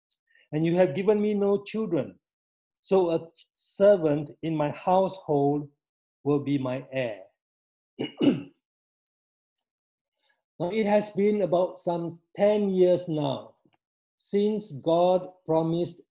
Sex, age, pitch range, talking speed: male, 50-69, 140-170 Hz, 110 wpm